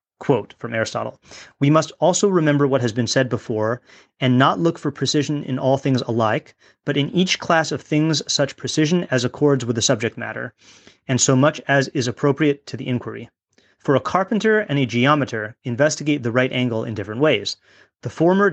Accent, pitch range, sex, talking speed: American, 125-150 Hz, male, 190 wpm